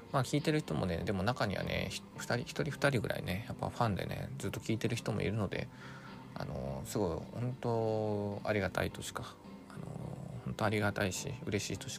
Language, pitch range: Japanese, 95-125 Hz